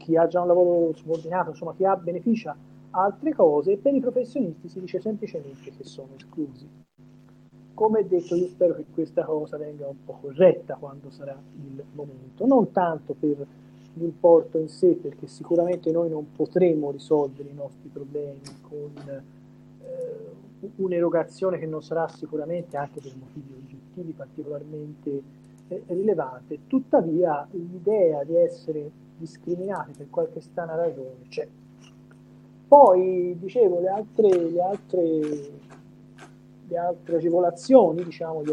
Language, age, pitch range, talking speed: Italian, 40-59, 145-185 Hz, 130 wpm